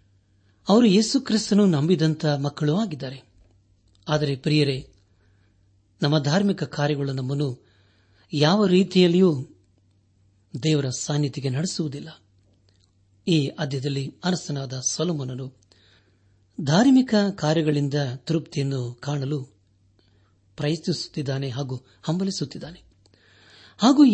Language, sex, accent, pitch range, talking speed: Kannada, male, native, 100-155 Hz, 70 wpm